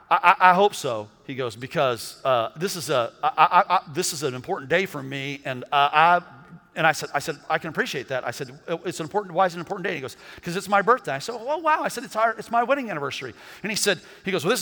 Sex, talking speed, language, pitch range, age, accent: male, 285 wpm, English, 170-235 Hz, 50-69, American